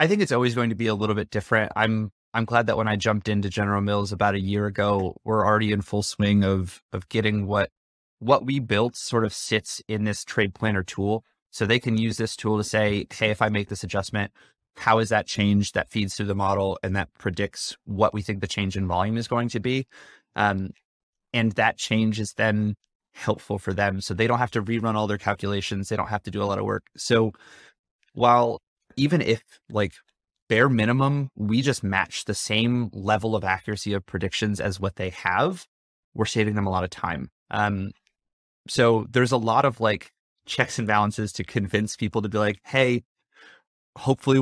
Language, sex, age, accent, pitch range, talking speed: English, male, 20-39, American, 100-115 Hz, 210 wpm